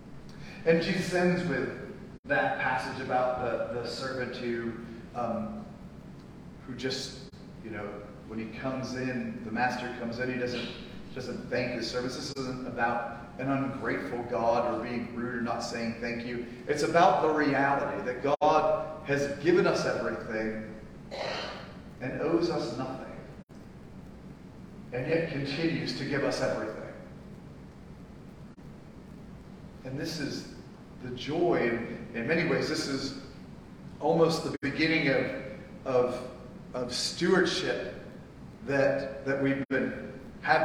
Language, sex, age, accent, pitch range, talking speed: English, male, 40-59, American, 125-150 Hz, 125 wpm